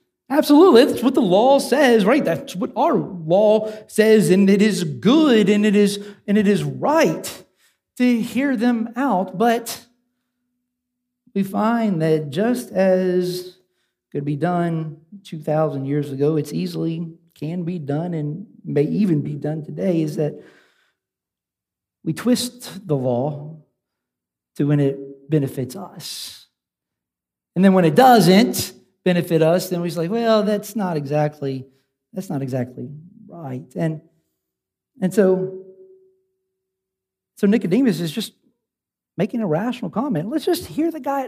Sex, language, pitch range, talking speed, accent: male, English, 165-245 Hz, 140 wpm, American